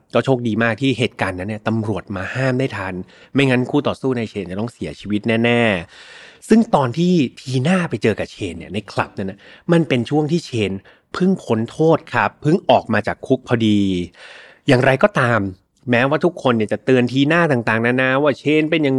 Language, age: Thai, 30-49